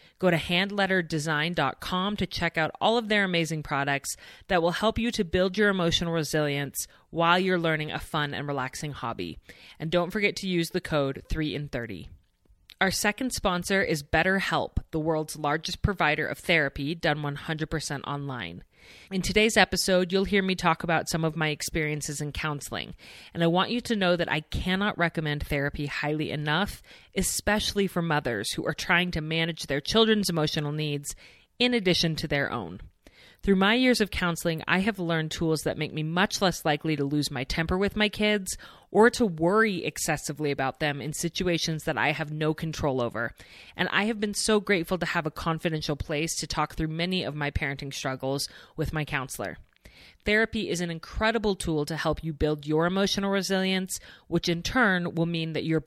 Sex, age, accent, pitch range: female, 30-49, American, 150-185 Hz